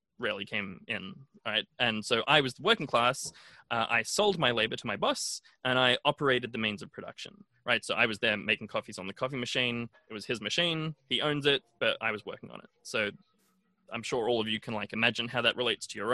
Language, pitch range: English, 115-155 Hz